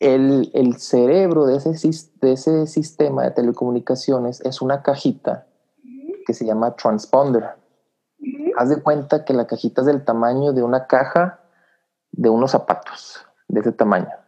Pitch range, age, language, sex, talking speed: 110-135 Hz, 30-49, English, male, 145 wpm